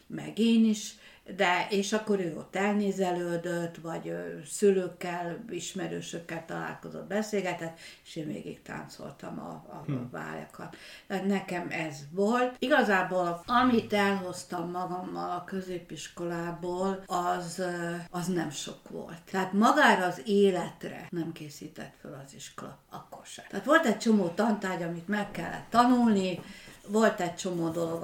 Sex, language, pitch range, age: female, Hungarian, 170-200 Hz, 60-79